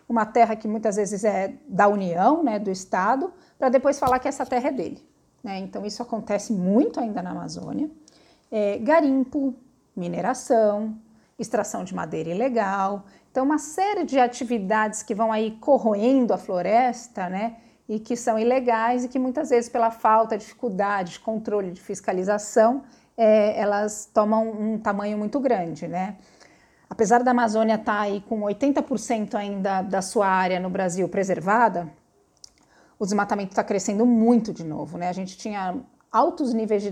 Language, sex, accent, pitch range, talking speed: Portuguese, female, Brazilian, 200-240 Hz, 160 wpm